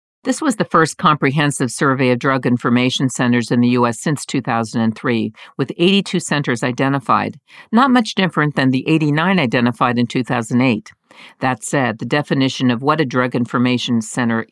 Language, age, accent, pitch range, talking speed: English, 50-69, American, 125-160 Hz, 155 wpm